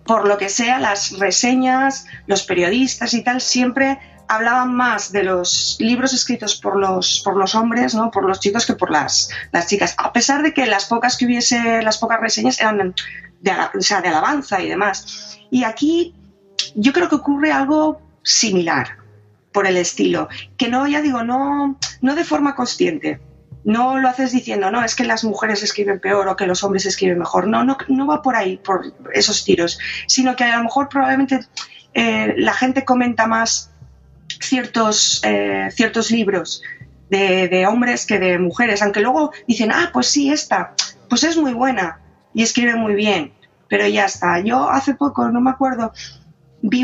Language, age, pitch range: Spanish, 30-49, 195-255 Hz